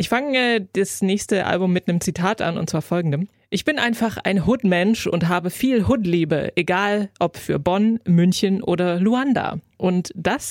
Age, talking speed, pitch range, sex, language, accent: 20-39, 170 wpm, 175-215 Hz, female, German, German